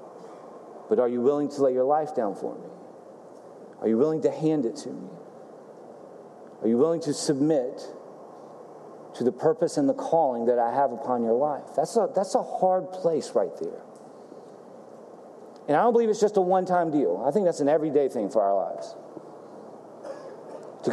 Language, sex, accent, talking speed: English, male, American, 180 wpm